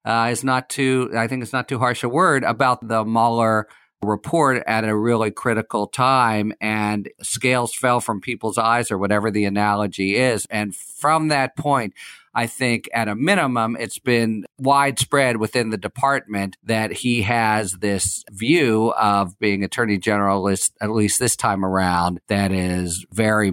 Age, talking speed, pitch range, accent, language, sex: 50-69, 165 wpm, 95-120 Hz, American, English, male